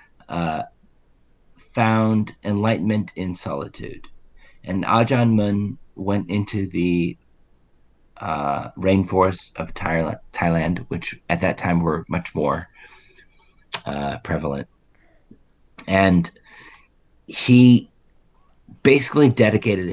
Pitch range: 80-110 Hz